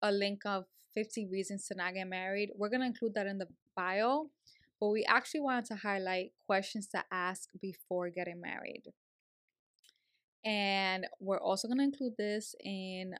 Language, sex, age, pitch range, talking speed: English, female, 20-39, 180-215 Hz, 170 wpm